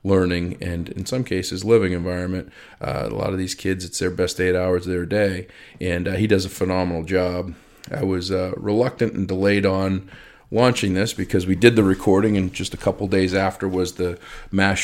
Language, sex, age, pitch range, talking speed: English, male, 40-59, 90-100 Hz, 205 wpm